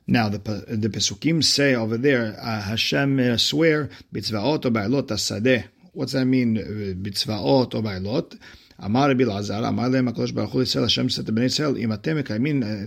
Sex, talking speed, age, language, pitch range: male, 150 wpm, 50-69, English, 110-135 Hz